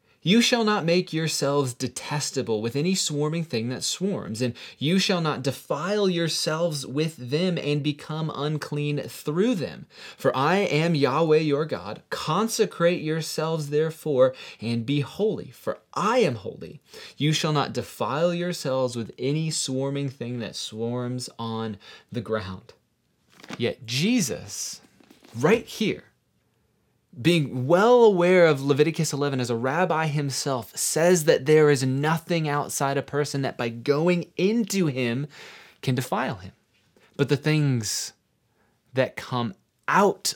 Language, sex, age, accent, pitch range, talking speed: English, male, 30-49, American, 125-170 Hz, 135 wpm